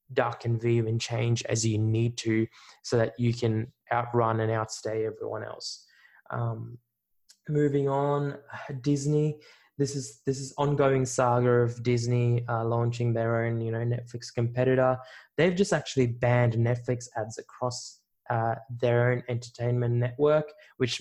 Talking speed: 145 wpm